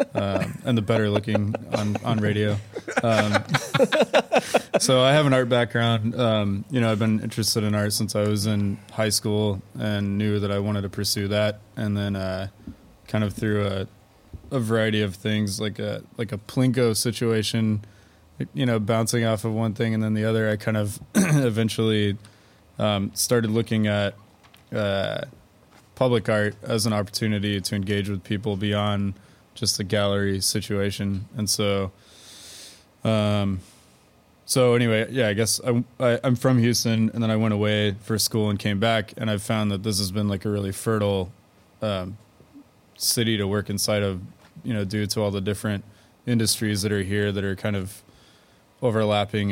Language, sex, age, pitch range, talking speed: English, male, 20-39, 100-115 Hz, 175 wpm